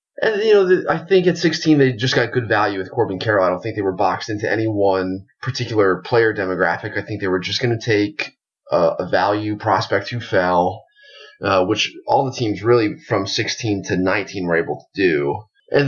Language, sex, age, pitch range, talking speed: English, male, 30-49, 95-130 Hz, 210 wpm